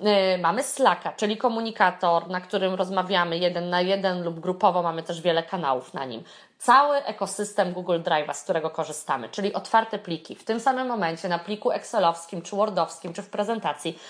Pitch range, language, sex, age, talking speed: 175-230 Hz, Polish, female, 20-39, 170 wpm